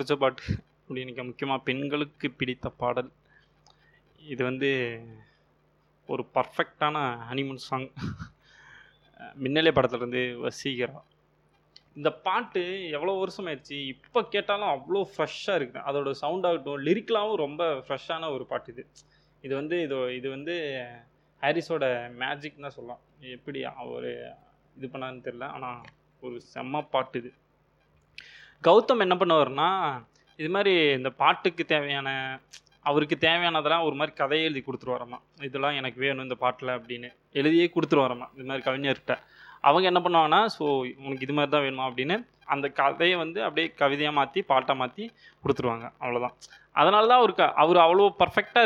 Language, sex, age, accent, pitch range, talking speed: Tamil, male, 20-39, native, 125-160 Hz, 125 wpm